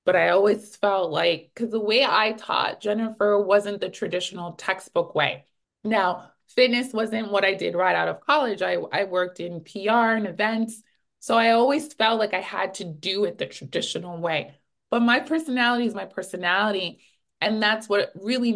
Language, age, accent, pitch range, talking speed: English, 20-39, American, 180-230 Hz, 180 wpm